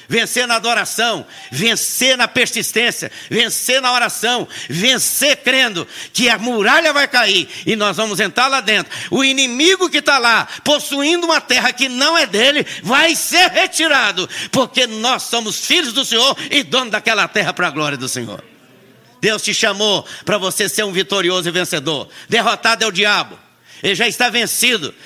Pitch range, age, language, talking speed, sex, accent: 200-250 Hz, 60-79, Portuguese, 170 wpm, male, Brazilian